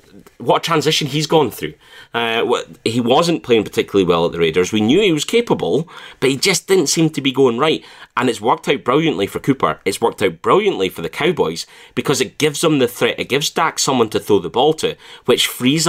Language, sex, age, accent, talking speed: English, male, 30-49, British, 225 wpm